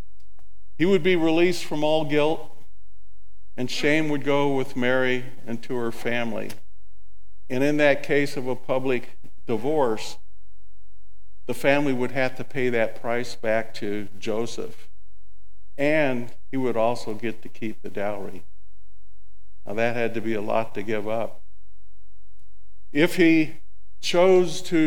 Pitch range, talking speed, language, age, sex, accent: 95-130 Hz, 140 wpm, English, 50-69, male, American